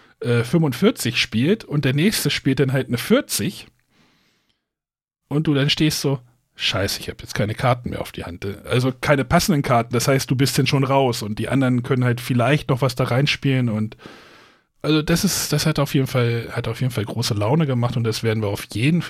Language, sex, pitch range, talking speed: German, male, 115-155 Hz, 215 wpm